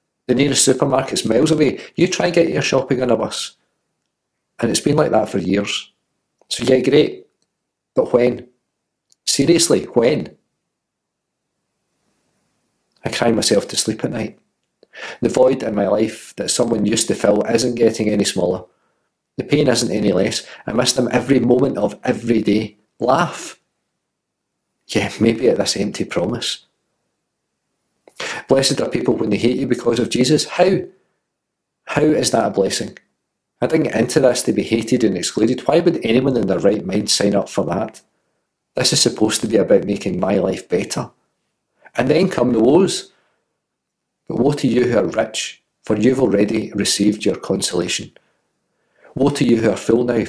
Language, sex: English, male